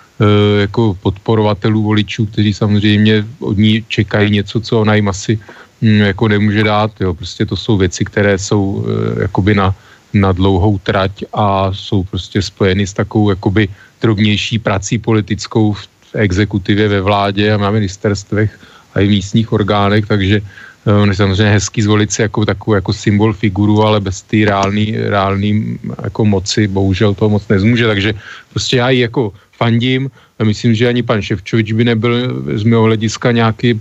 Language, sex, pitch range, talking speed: Slovak, male, 100-110 Hz, 160 wpm